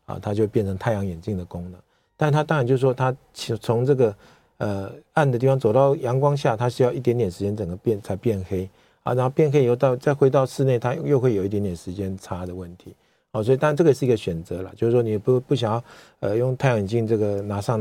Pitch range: 100-130 Hz